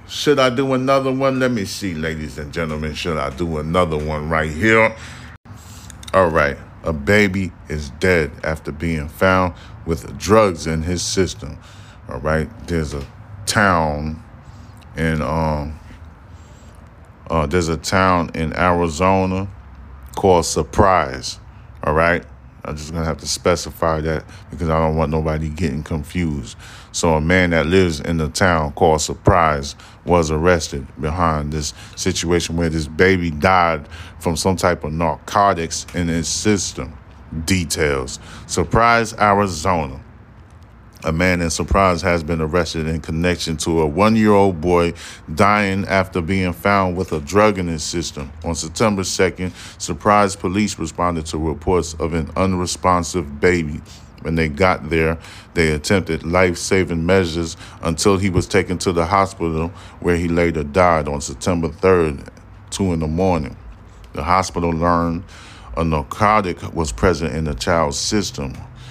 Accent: American